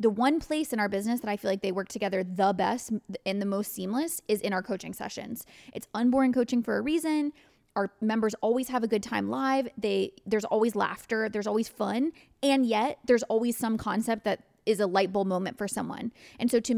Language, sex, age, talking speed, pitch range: English, female, 20-39, 220 wpm, 205-245 Hz